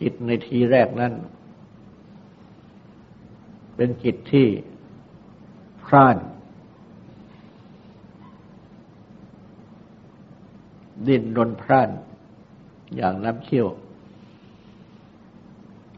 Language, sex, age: Thai, male, 60-79